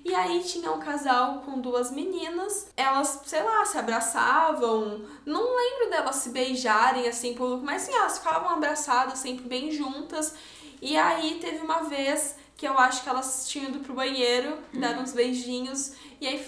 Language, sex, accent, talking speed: Portuguese, female, Brazilian, 170 wpm